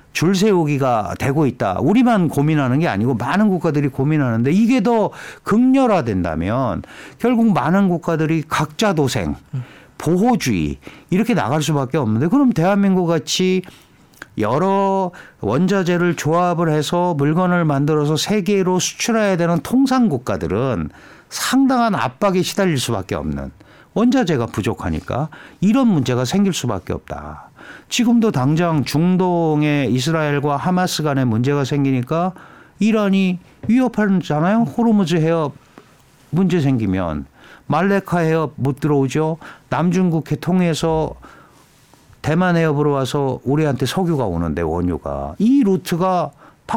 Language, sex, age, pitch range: Korean, male, 60-79, 135-190 Hz